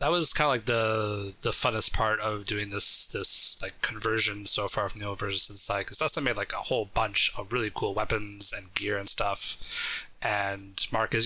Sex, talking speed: male, 215 wpm